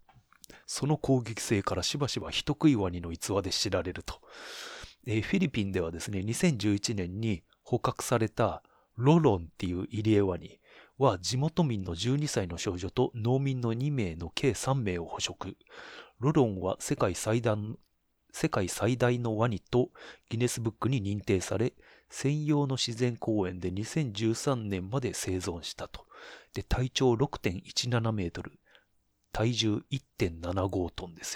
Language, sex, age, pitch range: Japanese, male, 30-49, 95-130 Hz